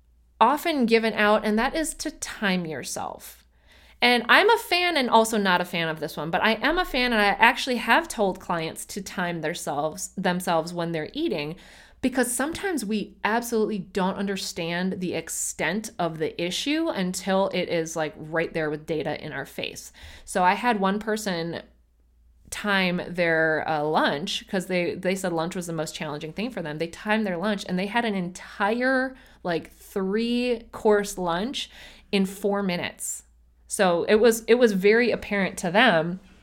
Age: 30-49